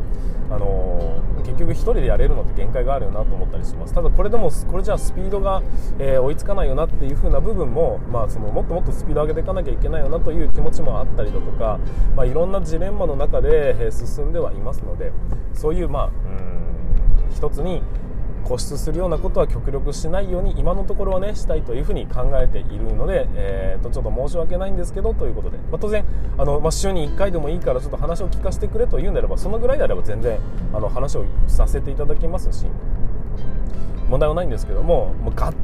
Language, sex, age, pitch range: Japanese, male, 20-39, 105-175 Hz